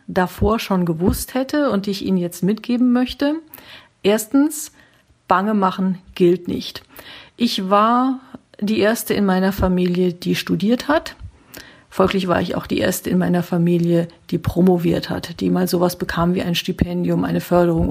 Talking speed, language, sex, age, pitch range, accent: 160 wpm, German, female, 50-69, 175-220 Hz, German